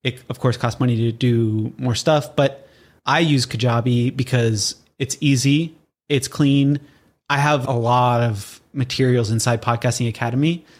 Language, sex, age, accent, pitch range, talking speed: English, male, 20-39, American, 125-145 Hz, 150 wpm